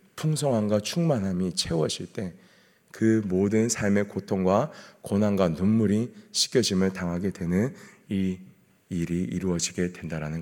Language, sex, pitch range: Korean, male, 100-140 Hz